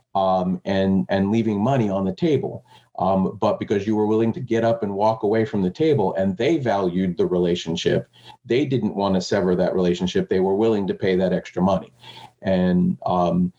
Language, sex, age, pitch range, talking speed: English, male, 40-59, 90-105 Hz, 200 wpm